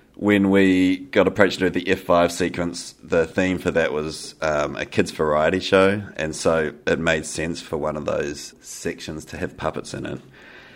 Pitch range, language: 85-100 Hz, English